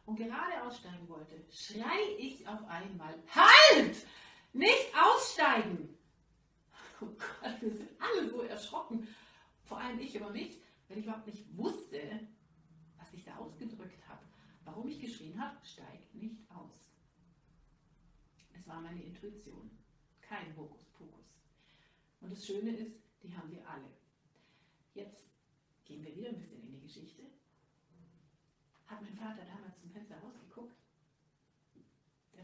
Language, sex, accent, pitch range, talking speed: German, female, German, 160-225 Hz, 125 wpm